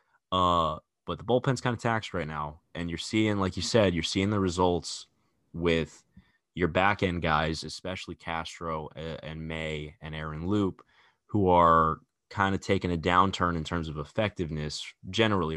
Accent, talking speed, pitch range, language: American, 160 wpm, 80-100 Hz, English